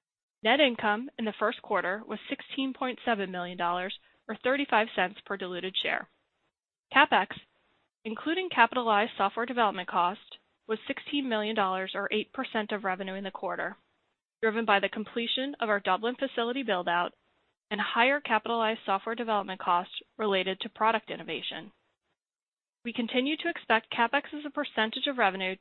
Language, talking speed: English, 140 wpm